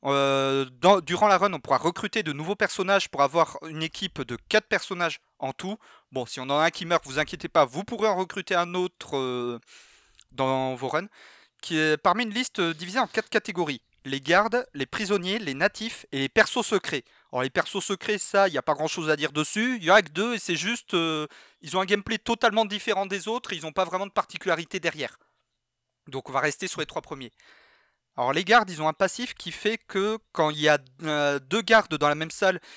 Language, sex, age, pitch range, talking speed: French, male, 30-49, 145-205 Hz, 235 wpm